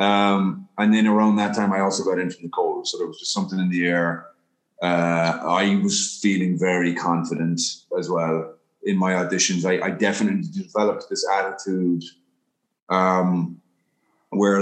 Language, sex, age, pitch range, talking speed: English, male, 30-49, 90-110 Hz, 165 wpm